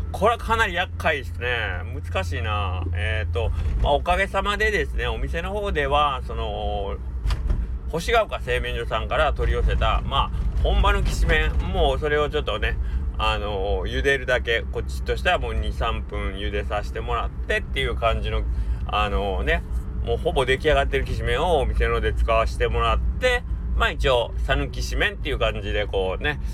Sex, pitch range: male, 65-95 Hz